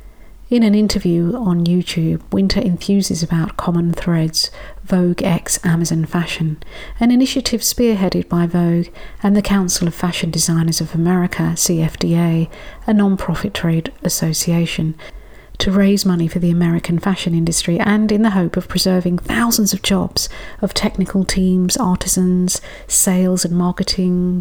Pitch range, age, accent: 175-200 Hz, 50-69, British